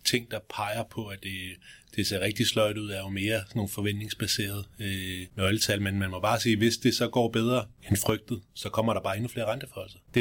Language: Danish